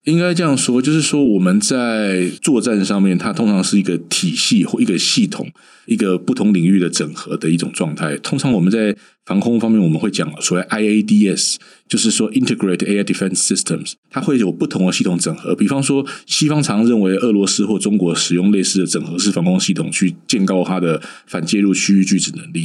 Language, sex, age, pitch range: Chinese, male, 20-39, 90-120 Hz